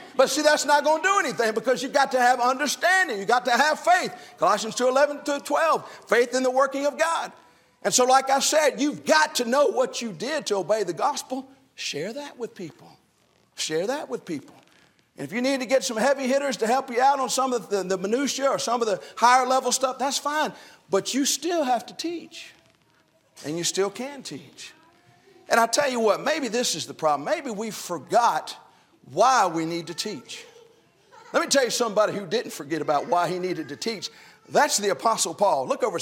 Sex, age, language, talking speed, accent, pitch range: male, 50-69, English, 220 wpm, American, 175-275 Hz